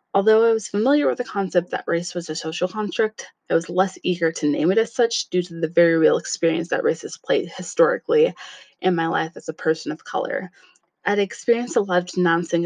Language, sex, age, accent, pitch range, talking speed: English, female, 20-39, American, 165-220 Hz, 225 wpm